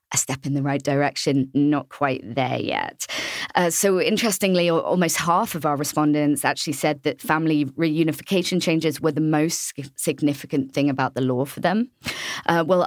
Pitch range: 140-170 Hz